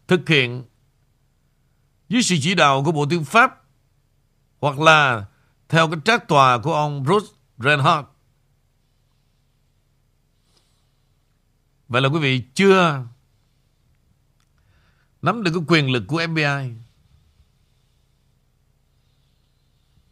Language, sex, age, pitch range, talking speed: Vietnamese, male, 60-79, 130-160 Hz, 95 wpm